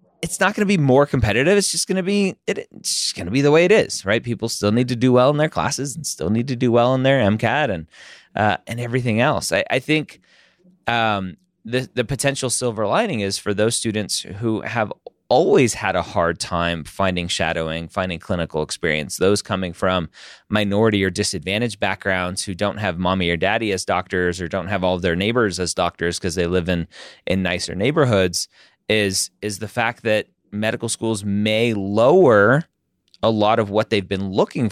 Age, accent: 20-39, American